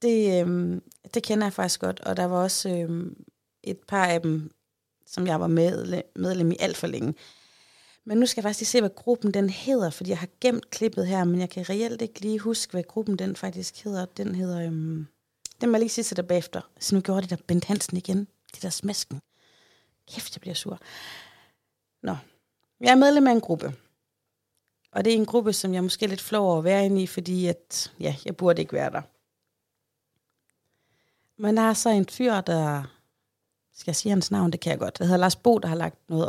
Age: 30-49